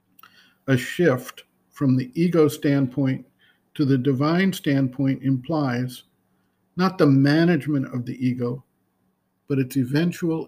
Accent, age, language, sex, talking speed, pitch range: American, 50-69, English, male, 115 wpm, 130-160 Hz